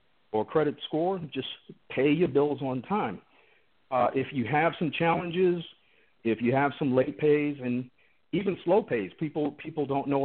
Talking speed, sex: 170 wpm, male